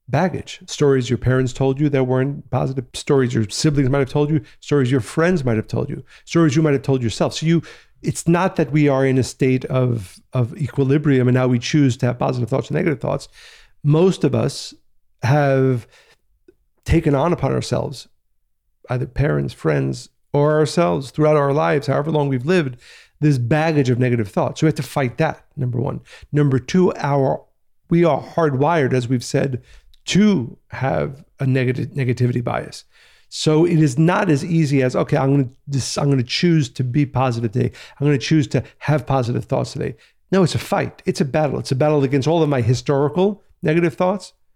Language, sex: English, male